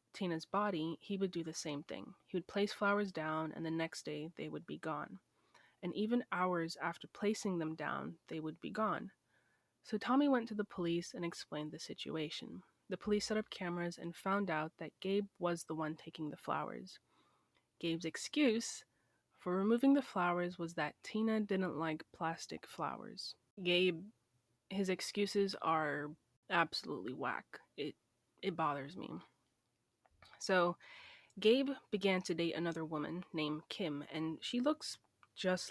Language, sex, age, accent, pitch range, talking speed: English, female, 20-39, American, 160-210 Hz, 160 wpm